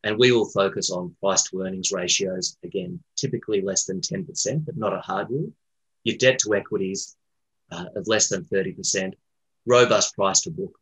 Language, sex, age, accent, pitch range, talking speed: English, male, 30-49, Australian, 95-130 Hz, 175 wpm